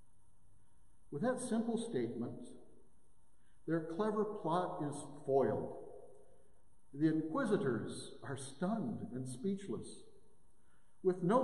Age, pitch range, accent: 60-79, 135-210 Hz, American